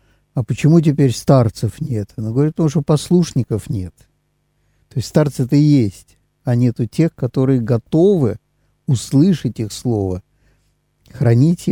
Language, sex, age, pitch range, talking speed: Russian, male, 50-69, 115-145 Hz, 125 wpm